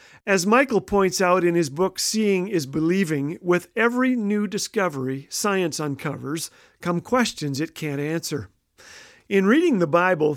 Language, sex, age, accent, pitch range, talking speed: English, male, 50-69, American, 160-210 Hz, 145 wpm